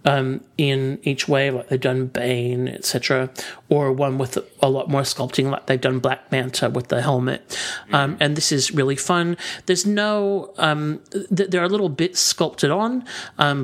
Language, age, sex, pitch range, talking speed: English, 40-59, male, 135-175 Hz, 180 wpm